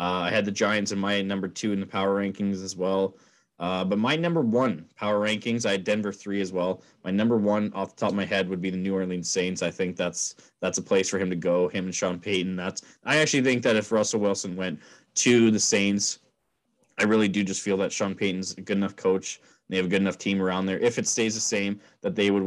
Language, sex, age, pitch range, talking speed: English, male, 20-39, 95-110 Hz, 260 wpm